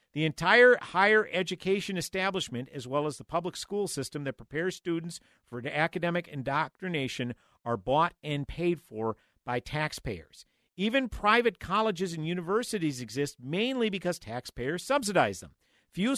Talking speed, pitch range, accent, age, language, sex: 135 wpm, 125-180 Hz, American, 50-69, English, male